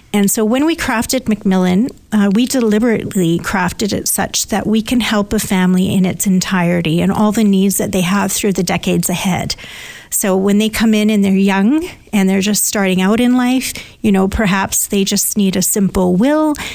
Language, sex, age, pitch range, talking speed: English, female, 40-59, 190-220 Hz, 200 wpm